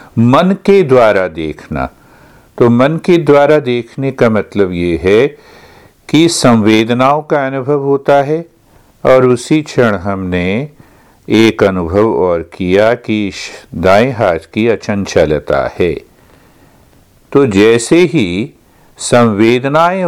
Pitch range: 105-135 Hz